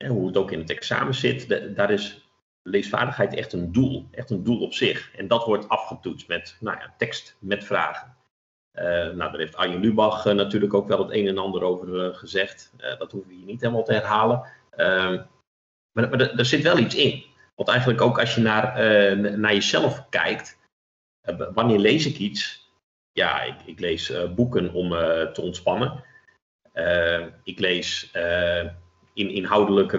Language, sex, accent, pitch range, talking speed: Dutch, male, Dutch, 90-115 Hz, 180 wpm